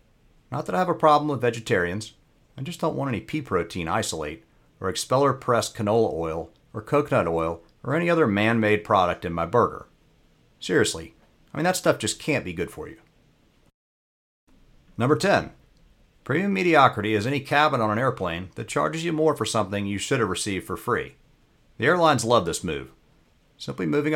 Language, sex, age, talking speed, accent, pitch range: English, male, 50-69, 175 wpm, American, 95-145 Hz